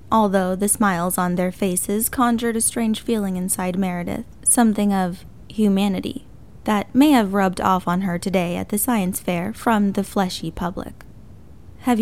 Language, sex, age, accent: English, female, 10-29, American